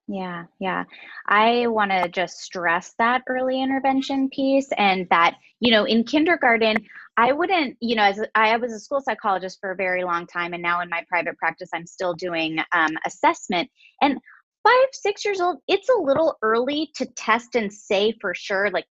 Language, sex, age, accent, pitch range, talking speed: English, female, 20-39, American, 190-270 Hz, 185 wpm